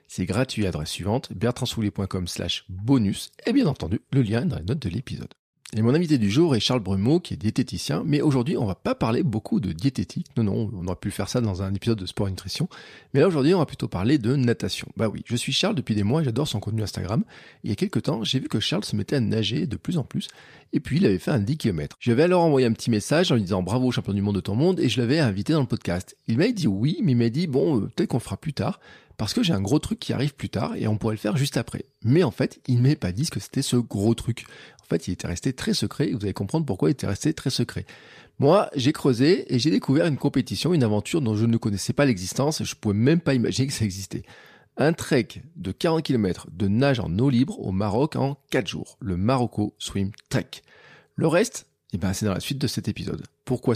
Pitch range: 100-135 Hz